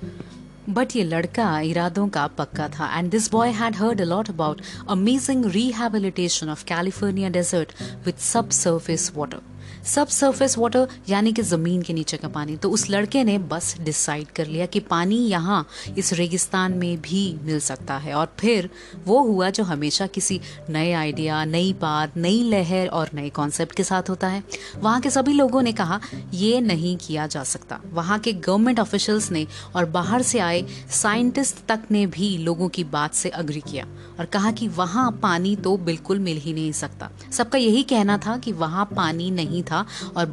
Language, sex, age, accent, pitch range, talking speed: Hindi, female, 30-49, native, 160-215 Hz, 180 wpm